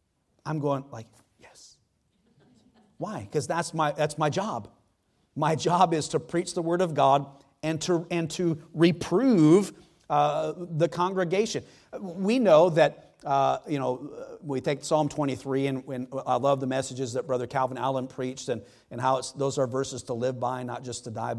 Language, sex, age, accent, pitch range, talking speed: English, male, 40-59, American, 130-165 Hz, 175 wpm